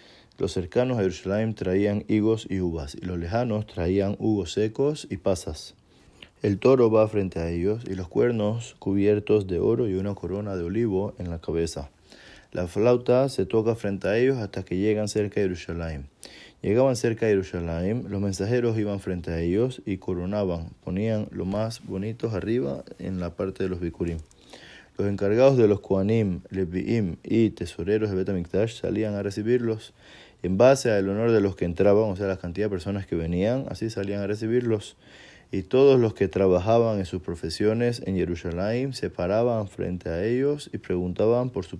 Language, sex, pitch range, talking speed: Spanish, male, 90-110 Hz, 180 wpm